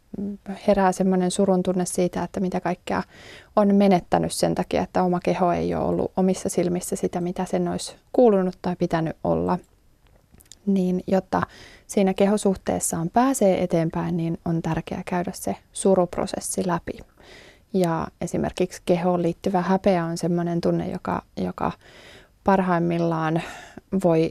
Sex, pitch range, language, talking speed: female, 175-195 Hz, Finnish, 130 wpm